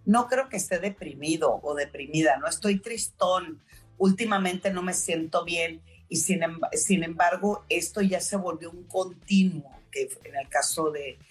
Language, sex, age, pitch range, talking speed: Spanish, female, 40-59, 160-215 Hz, 165 wpm